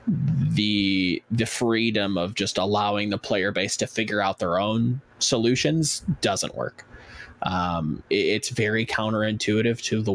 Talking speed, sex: 135 wpm, male